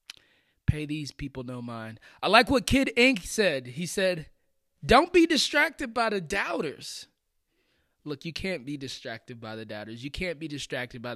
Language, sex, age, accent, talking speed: English, male, 20-39, American, 170 wpm